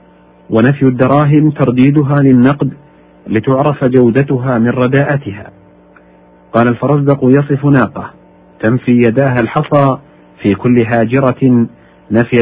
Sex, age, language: male, 50-69, Arabic